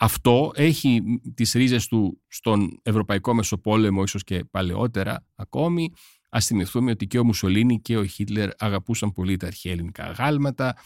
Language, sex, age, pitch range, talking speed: Greek, male, 40-59, 100-135 Hz, 145 wpm